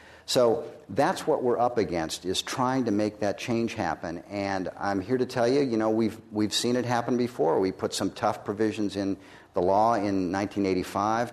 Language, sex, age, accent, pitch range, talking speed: English, male, 50-69, American, 95-110 Hz, 195 wpm